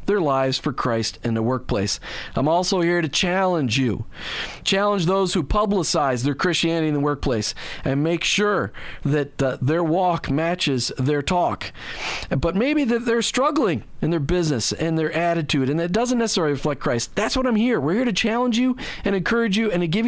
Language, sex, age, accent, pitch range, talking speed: English, male, 40-59, American, 145-210 Hz, 190 wpm